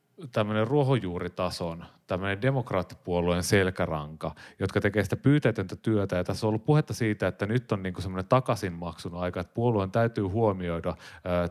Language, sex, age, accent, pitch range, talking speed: Finnish, male, 30-49, native, 90-120 Hz, 140 wpm